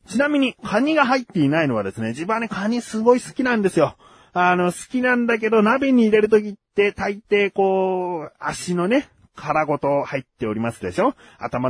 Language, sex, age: Japanese, male, 30-49